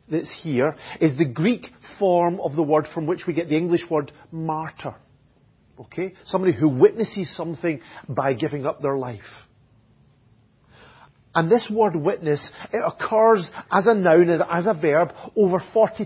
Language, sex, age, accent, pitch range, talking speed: English, male, 40-59, British, 130-185 Hz, 155 wpm